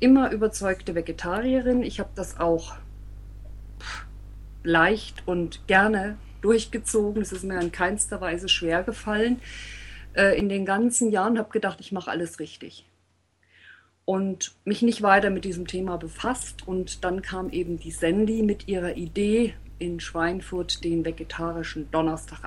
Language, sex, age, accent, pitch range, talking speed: German, female, 50-69, German, 165-210 Hz, 140 wpm